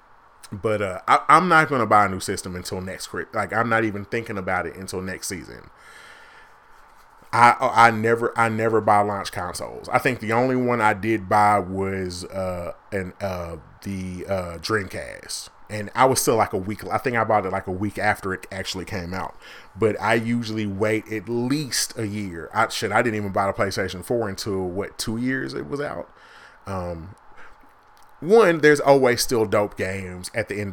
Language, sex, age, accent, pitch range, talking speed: English, male, 30-49, American, 95-115 Hz, 190 wpm